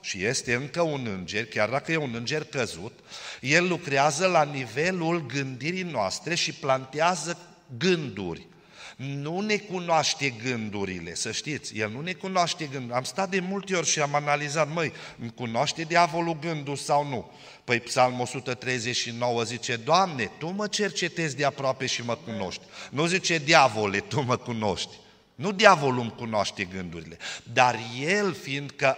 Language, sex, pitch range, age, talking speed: Romanian, male, 130-170 Hz, 50-69, 150 wpm